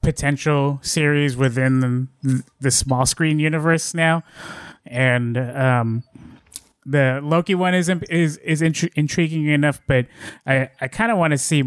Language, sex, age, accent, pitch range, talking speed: English, male, 20-39, American, 125-145 Hz, 140 wpm